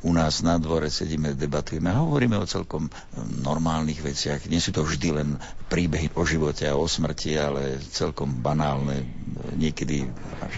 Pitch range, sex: 70-85 Hz, male